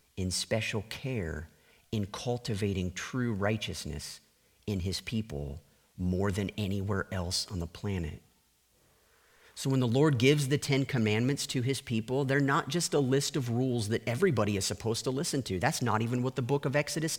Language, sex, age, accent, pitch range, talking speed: English, male, 50-69, American, 110-160 Hz, 175 wpm